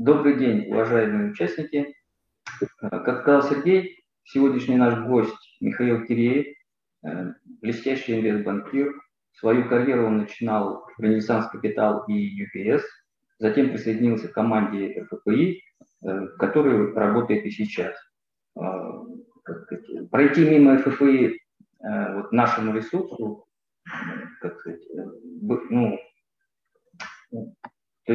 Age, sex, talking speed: 30-49, male, 80 wpm